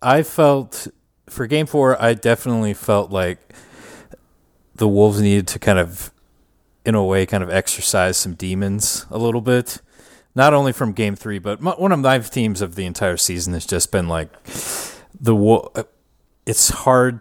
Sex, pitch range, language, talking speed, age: male, 95-115 Hz, English, 165 wpm, 30-49